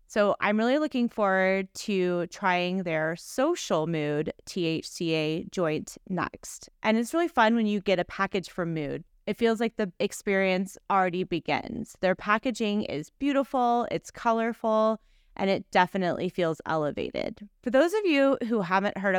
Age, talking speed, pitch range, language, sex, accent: 30-49, 155 wpm, 175-220 Hz, English, female, American